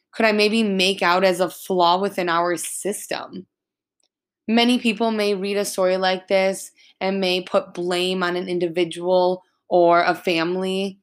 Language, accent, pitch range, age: English, American, 175-220 Hz, 20-39